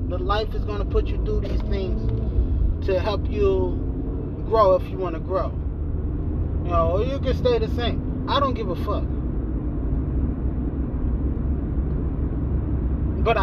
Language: English